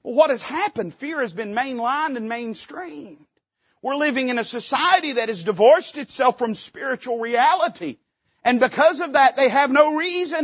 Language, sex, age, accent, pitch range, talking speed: English, male, 40-59, American, 170-270 Hz, 170 wpm